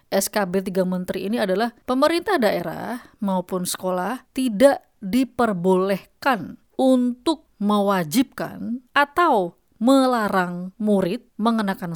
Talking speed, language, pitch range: 85 wpm, Indonesian, 180-235 Hz